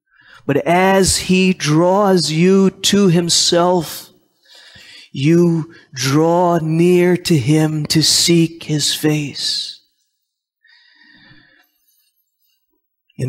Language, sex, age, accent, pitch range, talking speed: English, male, 30-49, American, 155-180 Hz, 75 wpm